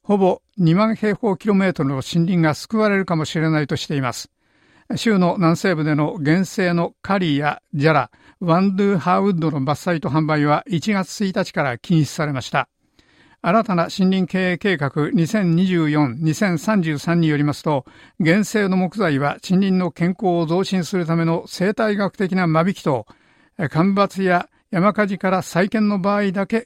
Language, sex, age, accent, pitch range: Japanese, male, 60-79, native, 155-195 Hz